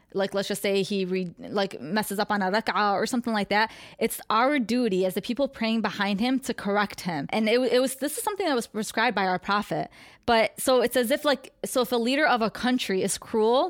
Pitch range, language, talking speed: 195-225 Hz, English, 240 wpm